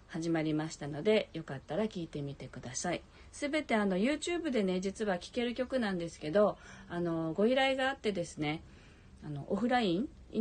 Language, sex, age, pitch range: Japanese, female, 40-59, 155-215 Hz